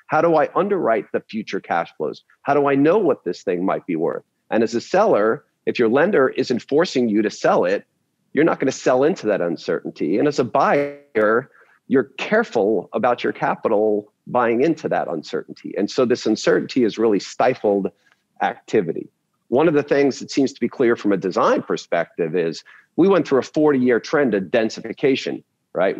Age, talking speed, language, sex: 40-59, 195 wpm, English, male